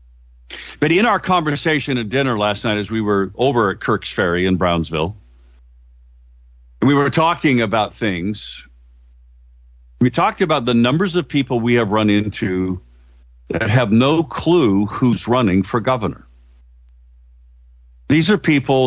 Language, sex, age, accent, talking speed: English, male, 60-79, American, 140 wpm